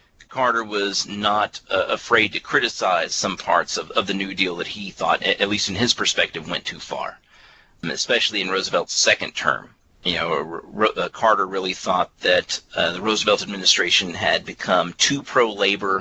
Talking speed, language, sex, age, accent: 185 wpm, English, male, 40-59, American